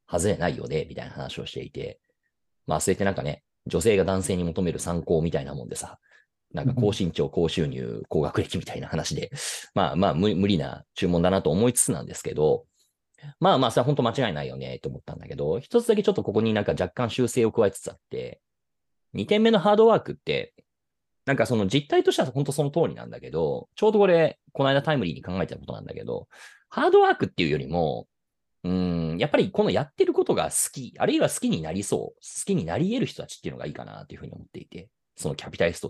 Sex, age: male, 30-49